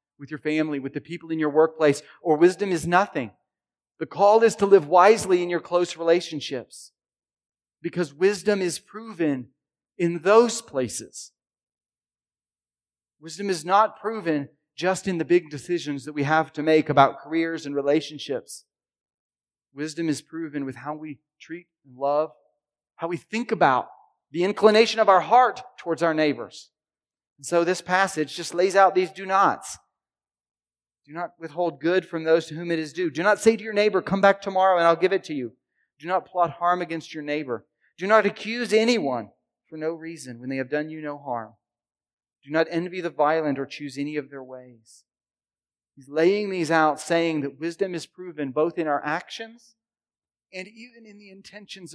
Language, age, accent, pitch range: English, 40-59, American, 145-190 Hz